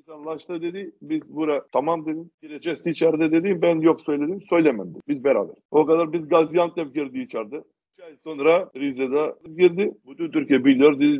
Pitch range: 140-180 Hz